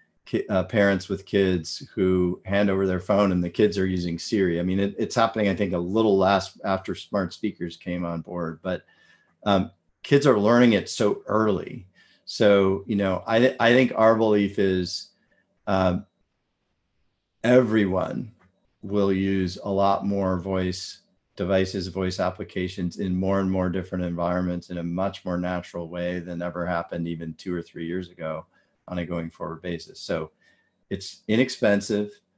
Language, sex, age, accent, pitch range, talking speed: English, male, 40-59, American, 90-105 Hz, 160 wpm